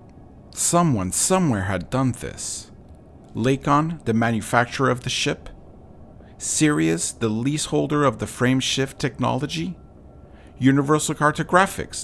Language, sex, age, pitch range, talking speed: English, male, 50-69, 90-140 Hz, 100 wpm